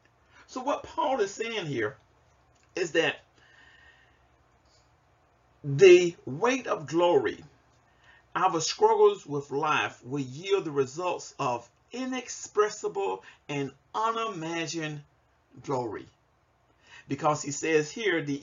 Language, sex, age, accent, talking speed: English, male, 50-69, American, 100 wpm